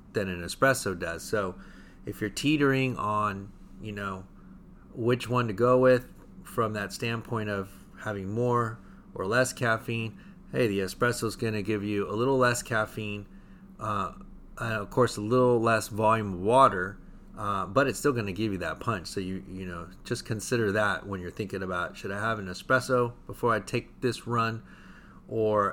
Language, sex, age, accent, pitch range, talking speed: English, male, 30-49, American, 95-115 Hz, 180 wpm